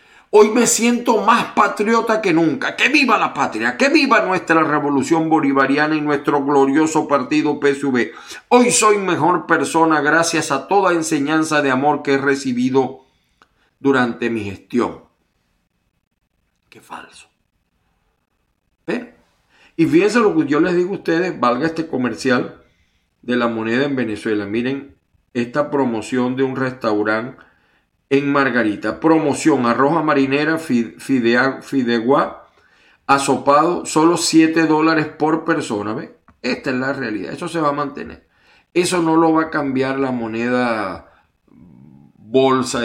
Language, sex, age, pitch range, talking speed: Spanish, male, 50-69, 120-160 Hz, 130 wpm